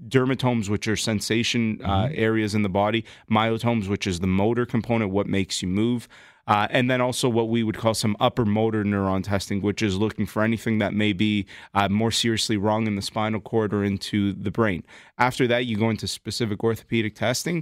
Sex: male